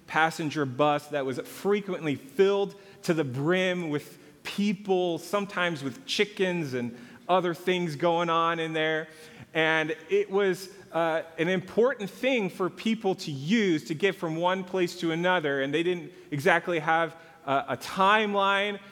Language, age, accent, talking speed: English, 40-59, American, 150 wpm